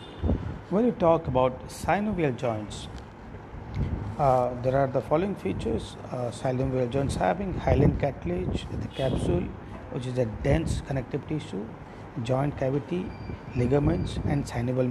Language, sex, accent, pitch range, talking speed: English, male, Indian, 120-150 Hz, 125 wpm